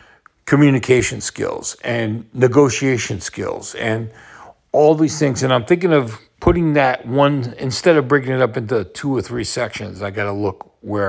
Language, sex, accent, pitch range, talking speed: English, male, American, 115-165 Hz, 170 wpm